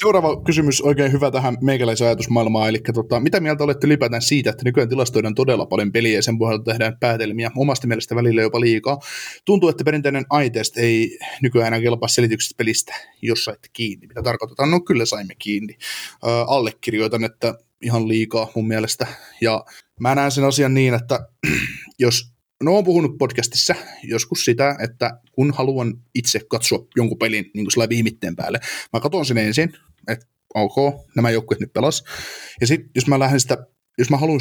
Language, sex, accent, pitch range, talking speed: Finnish, male, native, 115-140 Hz, 170 wpm